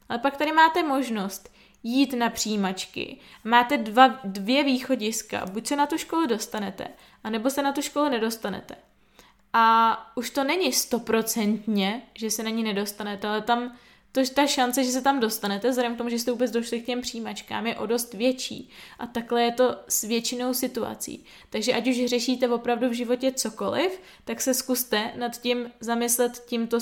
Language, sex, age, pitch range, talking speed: Czech, female, 20-39, 225-255 Hz, 175 wpm